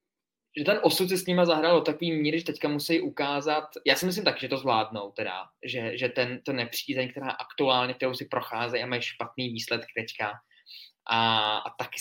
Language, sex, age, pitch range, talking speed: Czech, male, 20-39, 115-135 Hz, 200 wpm